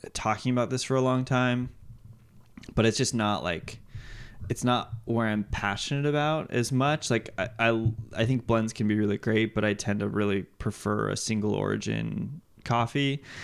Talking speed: 180 wpm